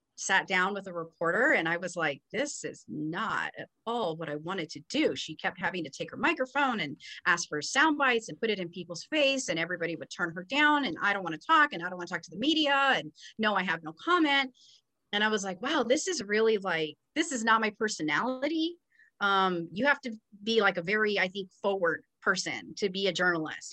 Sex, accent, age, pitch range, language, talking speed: female, American, 30-49, 185-275 Hz, English, 235 wpm